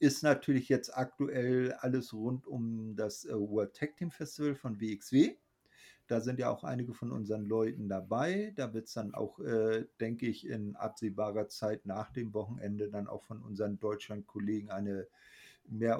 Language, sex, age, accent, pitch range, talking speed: German, male, 50-69, German, 110-140 Hz, 165 wpm